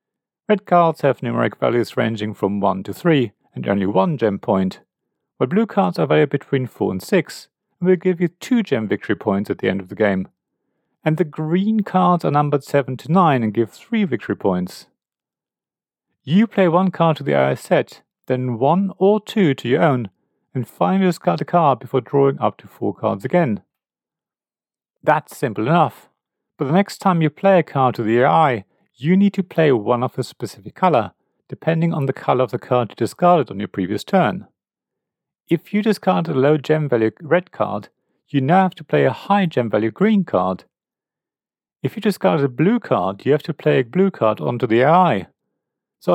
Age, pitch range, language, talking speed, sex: 40-59, 120-185 Hz, English, 200 wpm, male